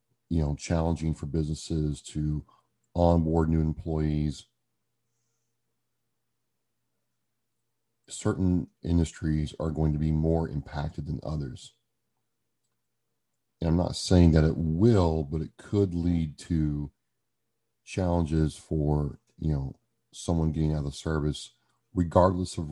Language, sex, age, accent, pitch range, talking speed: English, male, 40-59, American, 80-115 Hz, 115 wpm